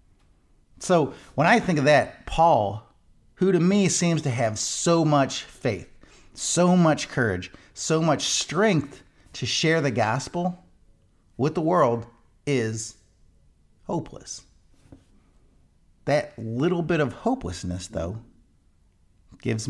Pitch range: 100-140 Hz